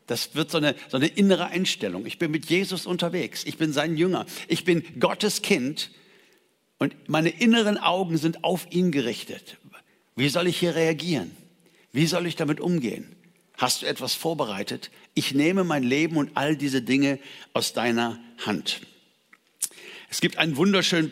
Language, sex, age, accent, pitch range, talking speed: German, male, 60-79, German, 145-180 Hz, 160 wpm